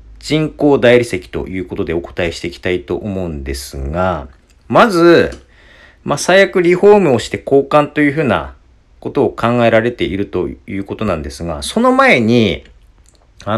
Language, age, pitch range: Japanese, 40-59, 90-150 Hz